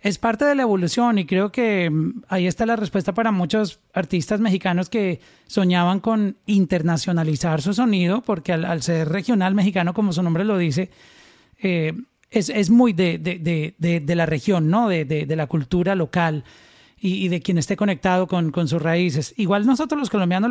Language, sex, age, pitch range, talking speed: Spanish, male, 40-59, 165-205 Hz, 180 wpm